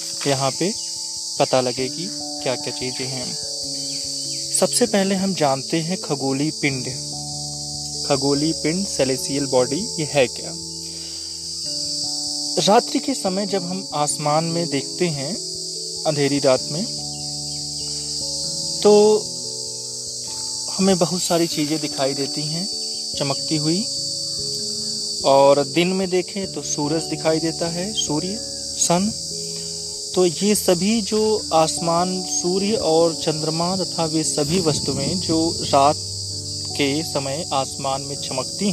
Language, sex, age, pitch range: Hindi, male, 30-49, 110-170 Hz